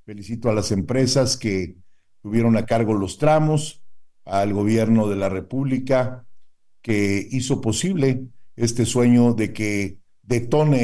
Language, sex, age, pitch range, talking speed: Spanish, male, 50-69, 115-150 Hz, 125 wpm